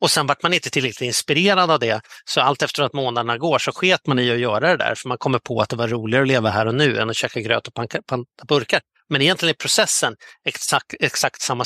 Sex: male